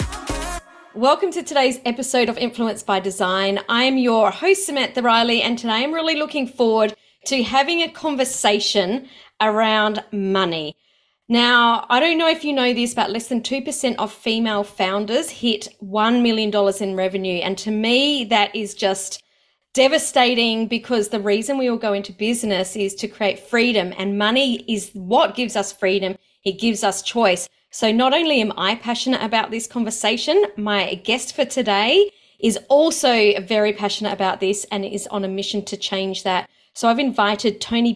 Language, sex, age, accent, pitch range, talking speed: English, female, 30-49, Australian, 200-255 Hz, 170 wpm